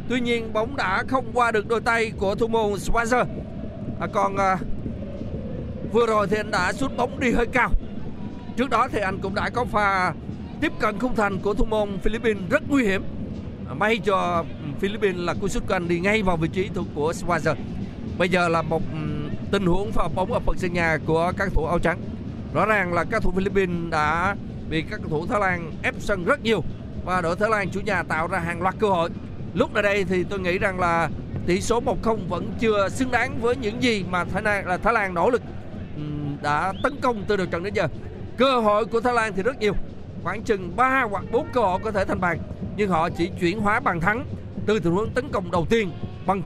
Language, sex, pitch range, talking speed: Vietnamese, male, 170-225 Hz, 225 wpm